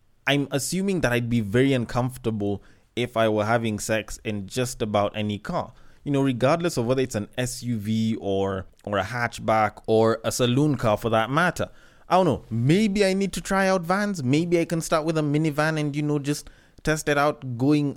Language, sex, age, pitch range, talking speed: English, male, 20-39, 115-165 Hz, 205 wpm